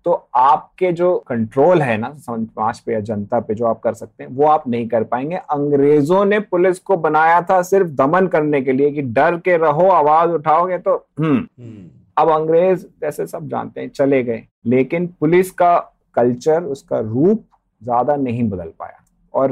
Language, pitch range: Hindi, 110-155 Hz